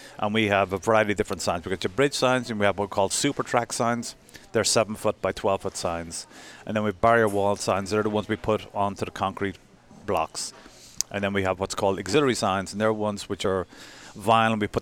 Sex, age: male, 30-49